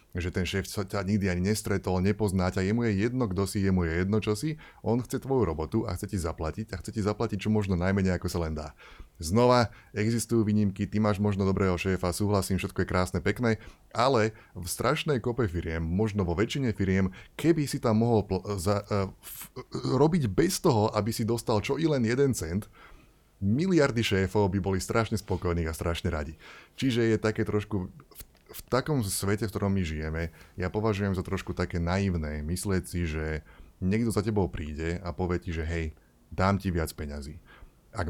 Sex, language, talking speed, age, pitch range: male, Slovak, 190 wpm, 20-39, 85-110 Hz